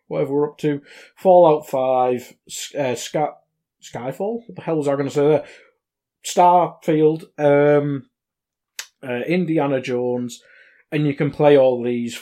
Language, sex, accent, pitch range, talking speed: English, male, British, 125-175 Hz, 140 wpm